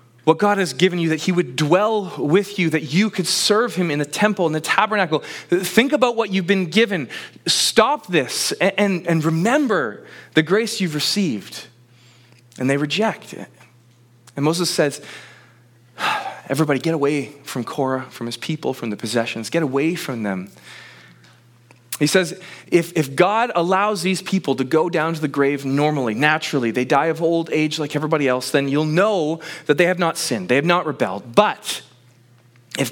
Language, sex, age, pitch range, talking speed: English, male, 20-39, 120-180 Hz, 175 wpm